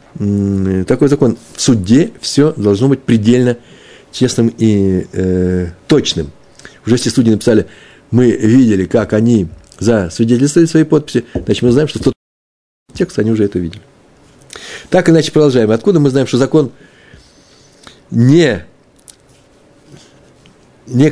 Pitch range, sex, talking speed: 100-135 Hz, male, 125 wpm